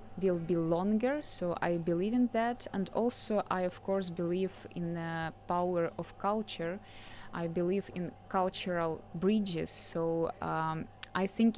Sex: female